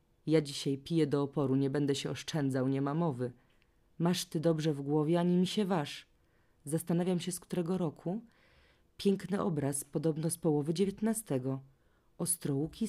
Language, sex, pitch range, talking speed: Polish, female, 145-170 Hz, 155 wpm